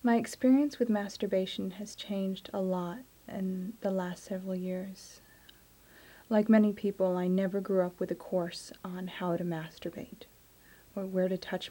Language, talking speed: English, 160 wpm